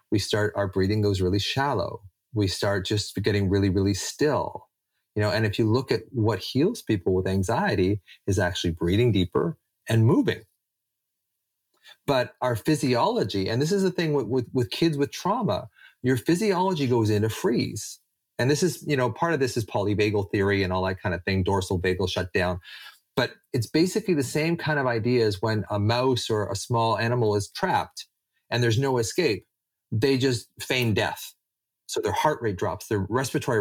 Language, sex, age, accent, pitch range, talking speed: English, male, 30-49, American, 100-135 Hz, 185 wpm